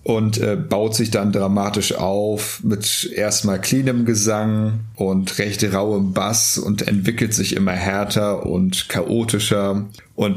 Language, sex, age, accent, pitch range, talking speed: German, male, 40-59, German, 100-110 Hz, 135 wpm